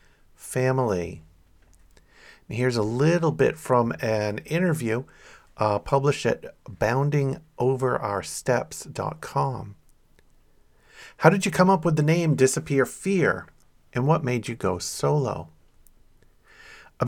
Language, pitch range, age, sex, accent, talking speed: English, 110-145 Hz, 50-69, male, American, 100 wpm